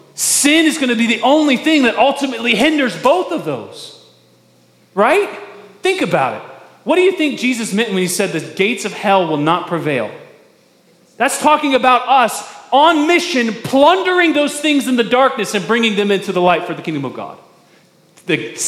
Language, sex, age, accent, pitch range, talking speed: English, male, 30-49, American, 175-280 Hz, 185 wpm